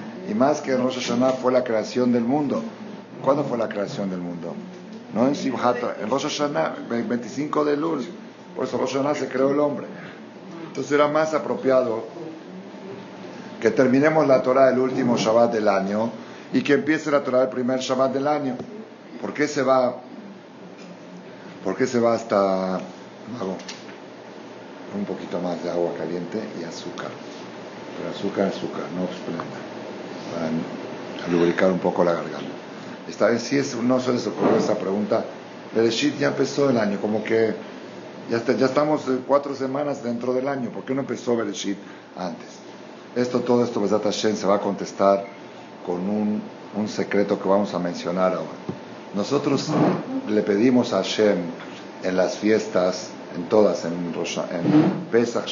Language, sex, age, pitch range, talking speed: Spanish, male, 50-69, 100-135 Hz, 165 wpm